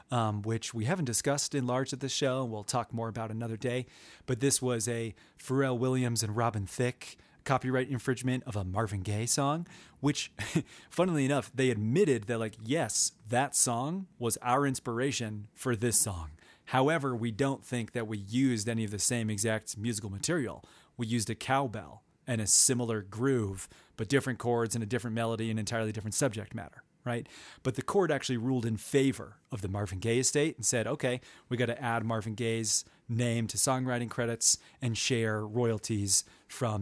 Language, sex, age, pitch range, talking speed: English, male, 30-49, 110-130 Hz, 185 wpm